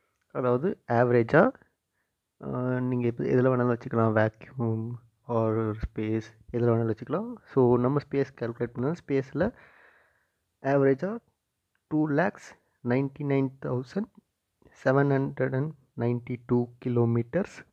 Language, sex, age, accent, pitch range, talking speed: Tamil, male, 30-49, native, 115-140 Hz, 80 wpm